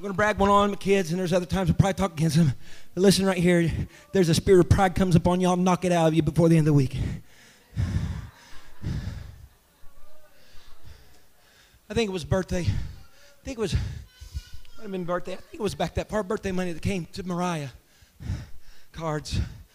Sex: male